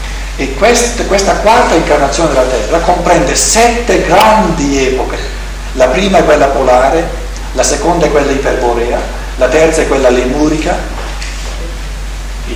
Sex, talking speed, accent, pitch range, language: male, 125 wpm, native, 125-165 Hz, Italian